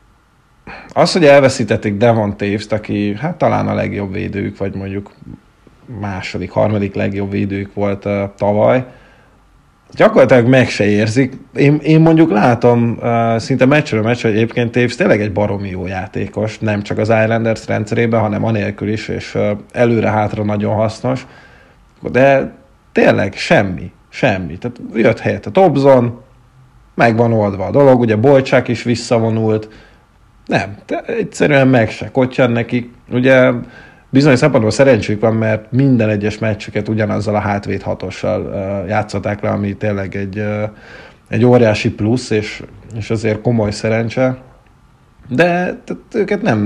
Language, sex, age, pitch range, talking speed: Hungarian, male, 30-49, 105-120 Hz, 140 wpm